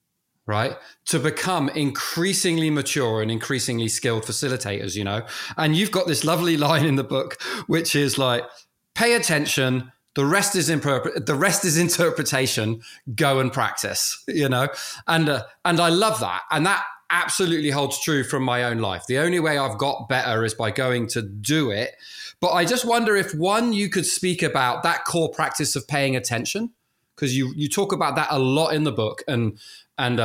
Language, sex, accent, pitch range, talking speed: English, male, British, 125-170 Hz, 185 wpm